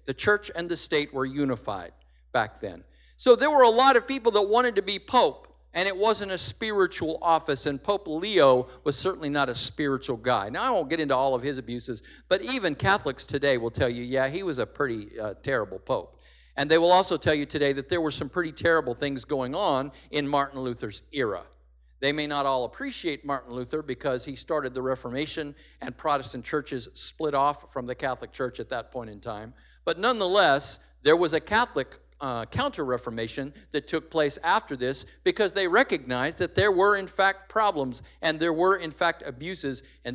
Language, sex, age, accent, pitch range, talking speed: English, male, 50-69, American, 130-180 Hz, 200 wpm